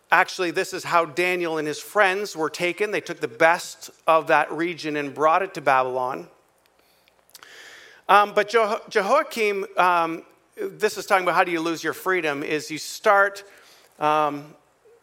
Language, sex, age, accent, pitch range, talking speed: English, male, 50-69, American, 165-220 Hz, 160 wpm